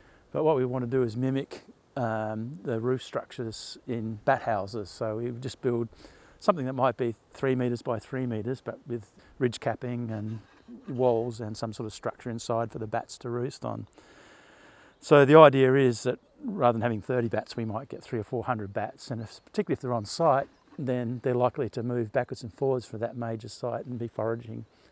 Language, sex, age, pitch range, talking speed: English, male, 50-69, 115-130 Hz, 205 wpm